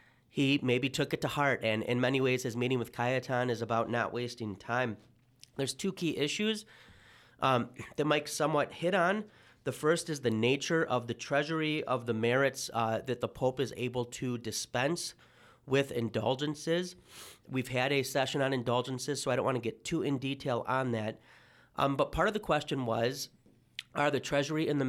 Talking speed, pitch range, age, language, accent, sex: 190 wpm, 120-145 Hz, 30-49, English, American, male